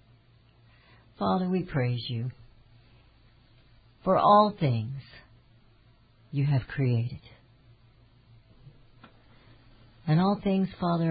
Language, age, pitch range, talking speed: English, 60-79, 120-145 Hz, 75 wpm